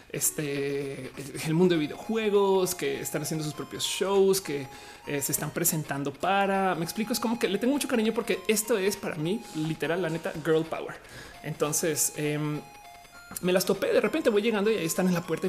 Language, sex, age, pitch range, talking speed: Spanish, male, 30-49, 155-210 Hz, 200 wpm